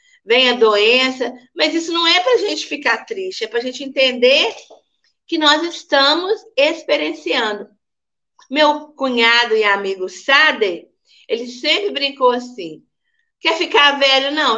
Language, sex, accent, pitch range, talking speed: Portuguese, female, Brazilian, 240-340 Hz, 130 wpm